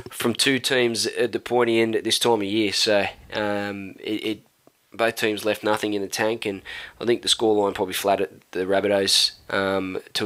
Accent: Australian